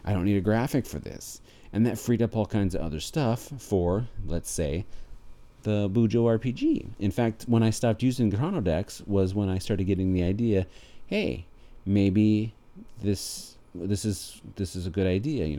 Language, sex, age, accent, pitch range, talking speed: English, male, 40-59, American, 80-105 Hz, 180 wpm